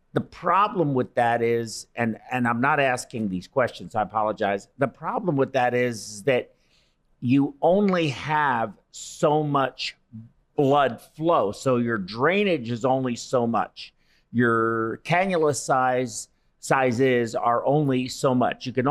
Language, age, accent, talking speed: English, 50-69, American, 140 wpm